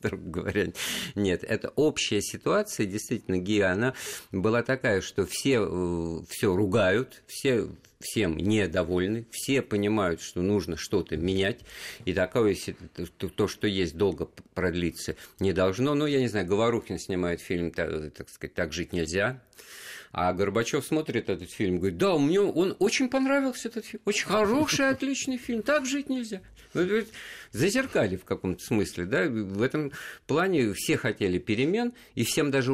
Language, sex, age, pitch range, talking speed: Russian, male, 50-69, 95-150 Hz, 145 wpm